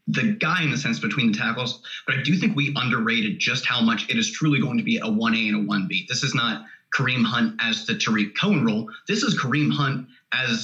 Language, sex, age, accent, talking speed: English, male, 20-39, American, 245 wpm